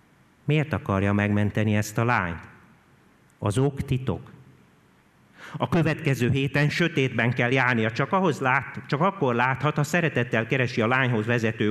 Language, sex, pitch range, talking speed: Hungarian, male, 100-130 Hz, 140 wpm